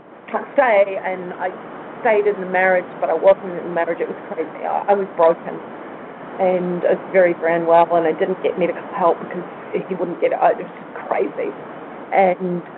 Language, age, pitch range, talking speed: English, 40-59, 180-235 Hz, 190 wpm